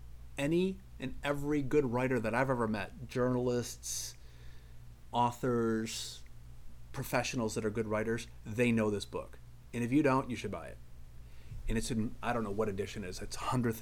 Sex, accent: male, American